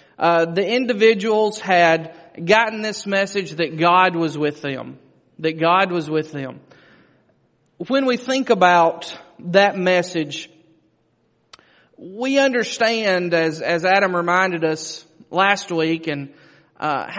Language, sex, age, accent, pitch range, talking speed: English, male, 30-49, American, 160-210 Hz, 120 wpm